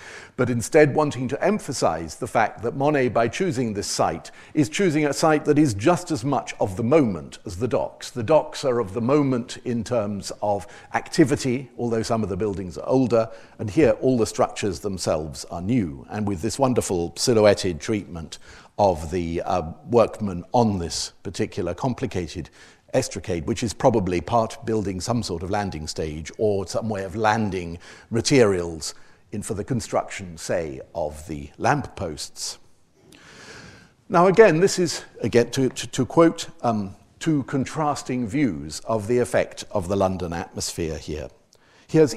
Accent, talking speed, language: British, 165 wpm, English